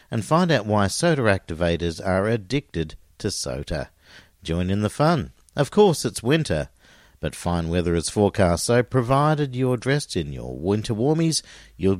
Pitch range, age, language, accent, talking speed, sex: 85-135 Hz, 50-69, English, Australian, 160 wpm, male